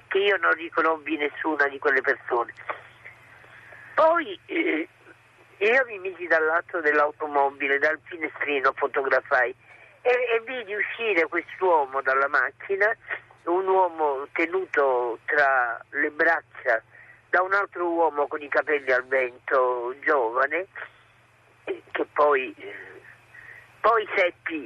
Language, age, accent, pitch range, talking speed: Italian, 50-69, native, 150-230 Hz, 110 wpm